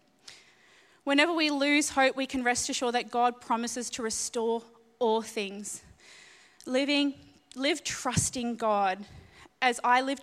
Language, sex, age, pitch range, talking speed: English, female, 20-39, 220-260 Hz, 130 wpm